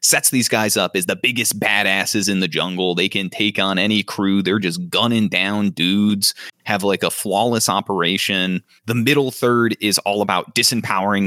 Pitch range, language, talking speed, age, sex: 95-115 Hz, English, 180 wpm, 30-49, male